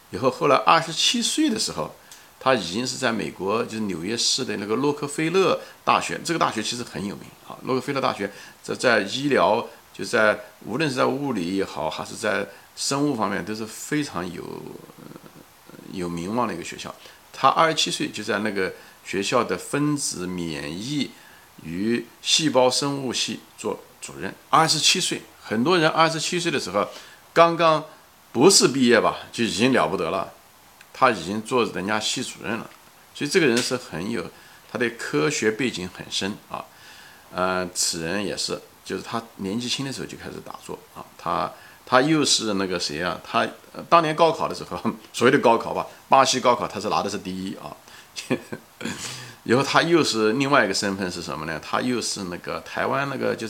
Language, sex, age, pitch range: Chinese, male, 50-69, 100-145 Hz